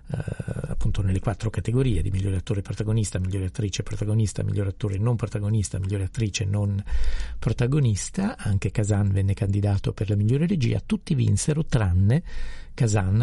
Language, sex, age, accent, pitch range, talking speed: Italian, male, 50-69, native, 95-110 Hz, 140 wpm